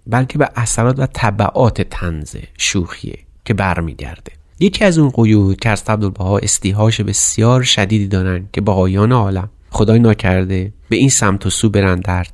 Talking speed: 160 wpm